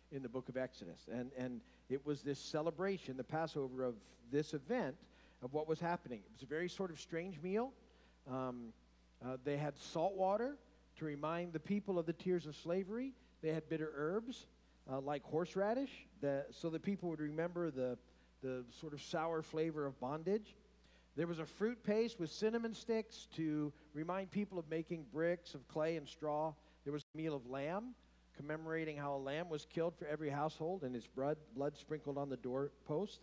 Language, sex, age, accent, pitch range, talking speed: English, male, 50-69, American, 130-175 Hz, 190 wpm